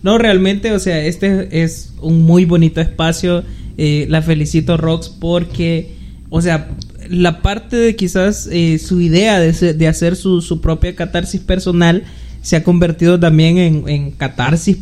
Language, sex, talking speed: Spanish, male, 160 wpm